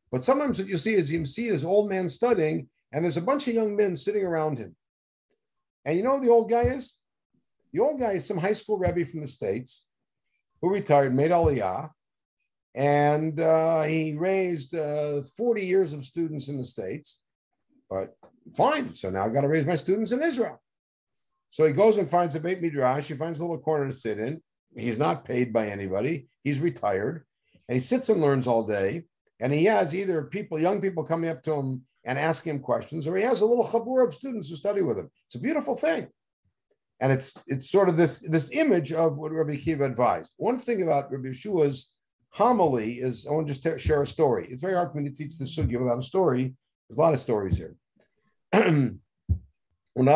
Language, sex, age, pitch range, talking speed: English, male, 50-69, 125-185 Hz, 210 wpm